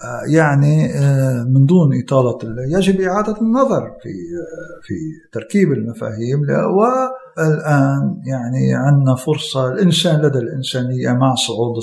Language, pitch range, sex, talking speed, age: Arabic, 130-180 Hz, male, 105 wpm, 50-69